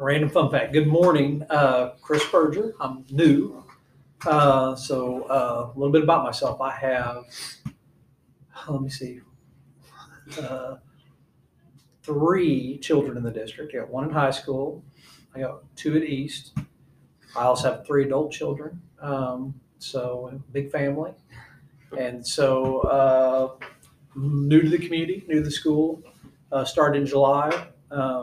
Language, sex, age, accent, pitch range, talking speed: English, male, 40-59, American, 125-145 Hz, 135 wpm